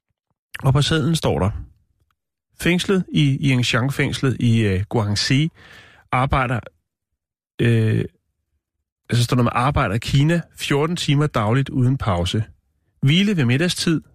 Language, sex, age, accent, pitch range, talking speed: Danish, male, 30-49, native, 100-135 Hz, 120 wpm